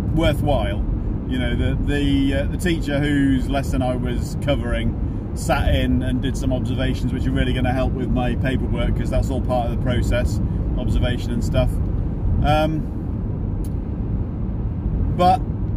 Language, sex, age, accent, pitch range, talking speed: English, male, 30-49, British, 95-125 Hz, 150 wpm